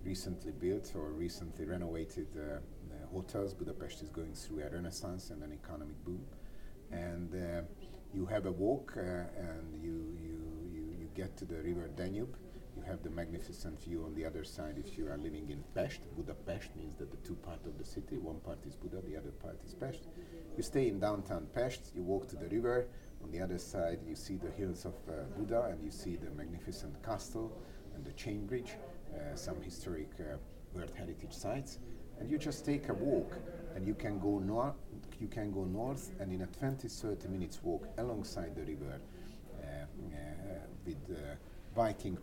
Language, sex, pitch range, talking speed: English, male, 80-95 Hz, 190 wpm